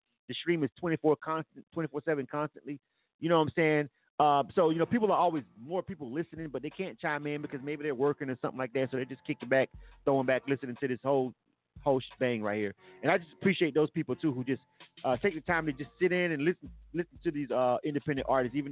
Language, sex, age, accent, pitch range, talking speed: English, male, 30-49, American, 130-165 Hz, 245 wpm